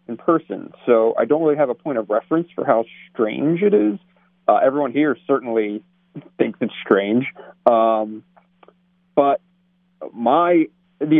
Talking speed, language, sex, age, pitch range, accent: 145 wpm, English, male, 40-59, 110-180 Hz, American